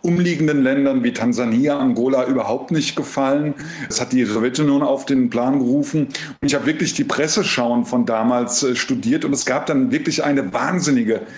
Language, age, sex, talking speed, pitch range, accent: German, 50-69, male, 170 wpm, 130-160 Hz, German